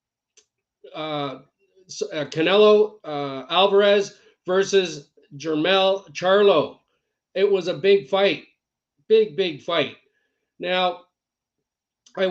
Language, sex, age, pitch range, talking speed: English, male, 40-59, 170-215 Hz, 85 wpm